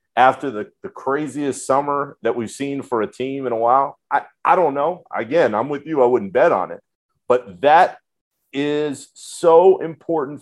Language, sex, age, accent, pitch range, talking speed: English, male, 30-49, American, 120-160 Hz, 185 wpm